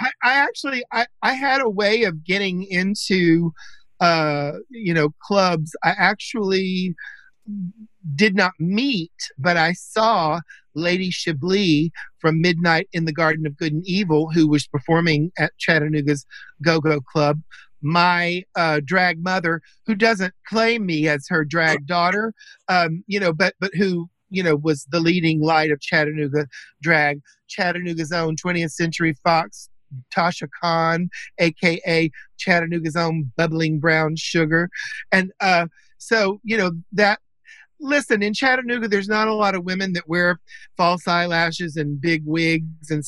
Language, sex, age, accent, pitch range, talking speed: English, male, 50-69, American, 155-185 Hz, 145 wpm